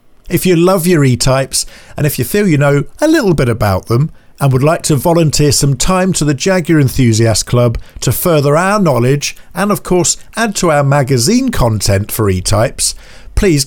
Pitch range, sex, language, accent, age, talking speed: 115-175 Hz, male, English, British, 50-69, 190 wpm